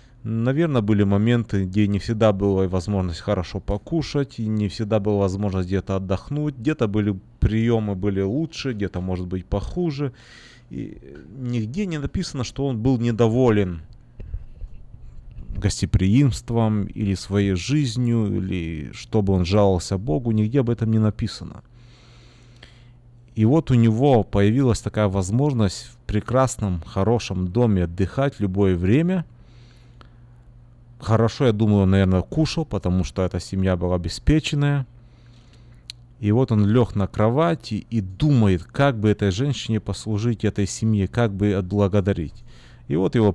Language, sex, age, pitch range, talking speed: Russian, male, 30-49, 100-120 Hz, 130 wpm